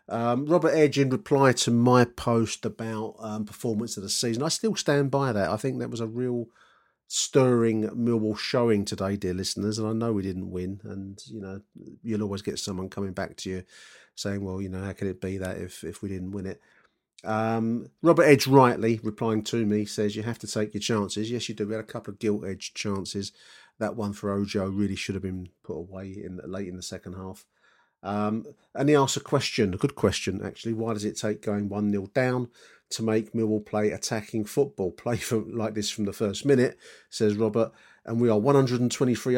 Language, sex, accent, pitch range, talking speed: English, male, British, 100-115 Hz, 215 wpm